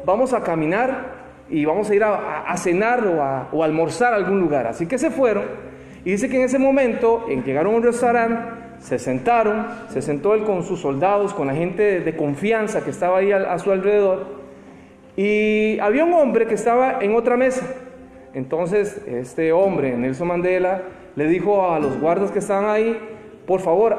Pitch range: 180-250 Hz